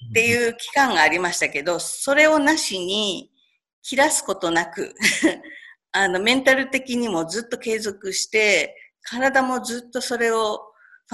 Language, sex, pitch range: Japanese, female, 185-265 Hz